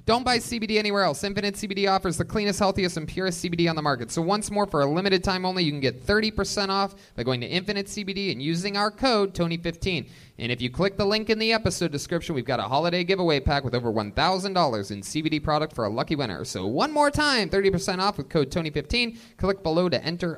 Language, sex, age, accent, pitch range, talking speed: English, male, 30-49, American, 160-215 Hz, 235 wpm